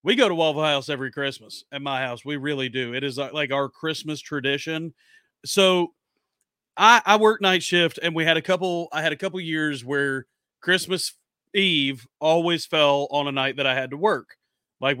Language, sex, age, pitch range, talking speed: English, male, 40-59, 145-185 Hz, 195 wpm